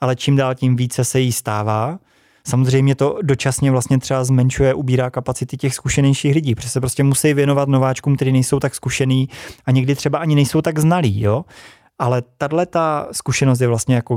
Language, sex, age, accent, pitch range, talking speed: Czech, male, 20-39, native, 120-155 Hz, 185 wpm